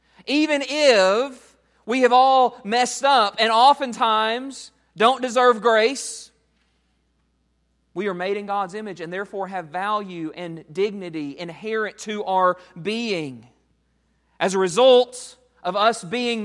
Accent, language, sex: American, English, male